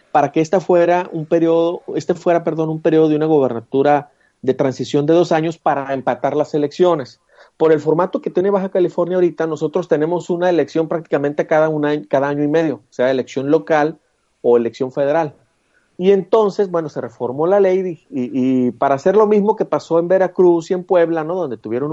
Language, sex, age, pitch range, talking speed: Spanish, male, 40-59, 130-175 Hz, 195 wpm